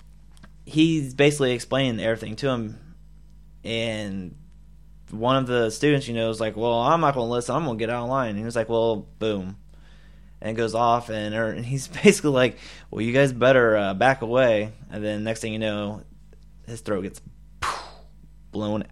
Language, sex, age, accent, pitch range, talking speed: English, male, 20-39, American, 105-125 Hz, 195 wpm